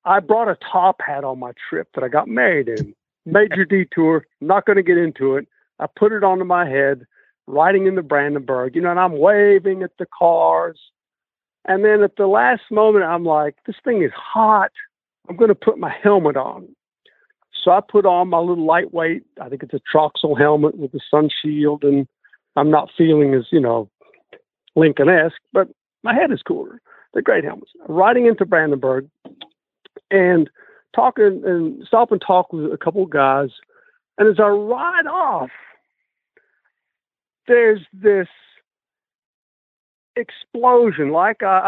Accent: American